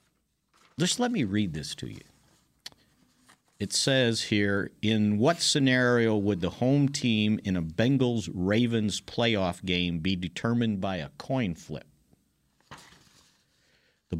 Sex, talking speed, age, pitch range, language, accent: male, 125 wpm, 50-69, 100-130 Hz, English, American